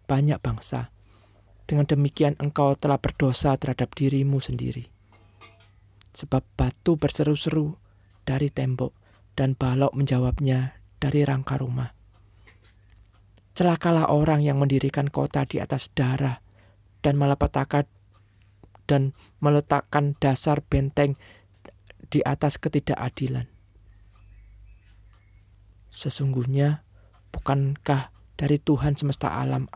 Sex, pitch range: male, 100-145 Hz